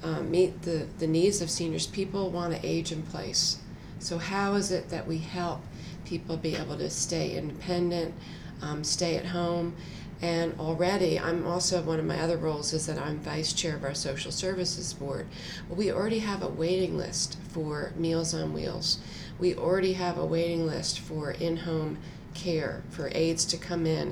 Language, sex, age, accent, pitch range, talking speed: English, female, 40-59, American, 160-175 Hz, 185 wpm